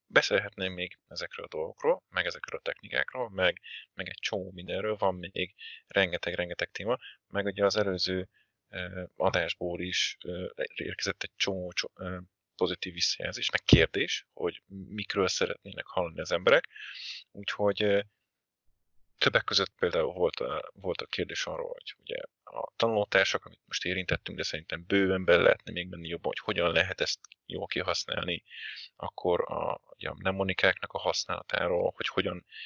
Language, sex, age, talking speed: Hungarian, male, 30-49, 135 wpm